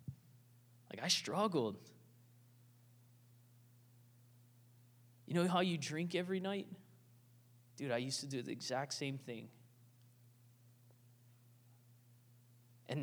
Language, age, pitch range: English, 20-39, 120-165 Hz